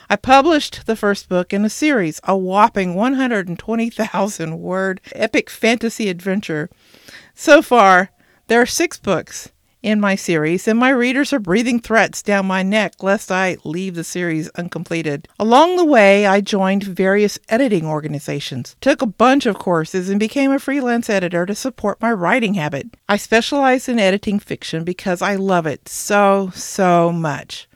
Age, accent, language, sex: 50-69, American, English, female